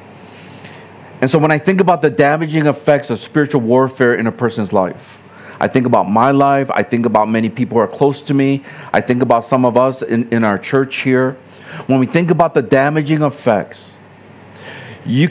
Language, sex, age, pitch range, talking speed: English, male, 50-69, 125-155 Hz, 195 wpm